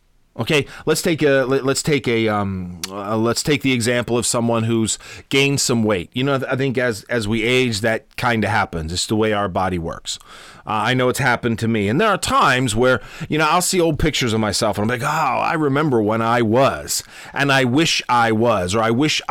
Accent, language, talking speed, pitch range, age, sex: American, English, 230 wpm, 110-140 Hz, 30-49, male